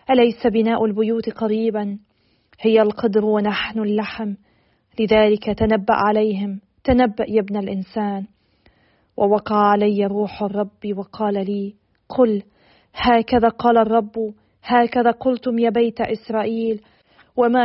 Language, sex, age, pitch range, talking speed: Arabic, female, 40-59, 215-235 Hz, 105 wpm